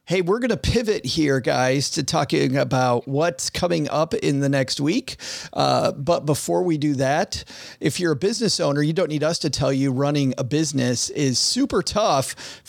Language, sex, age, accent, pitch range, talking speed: English, male, 40-59, American, 130-160 Hz, 200 wpm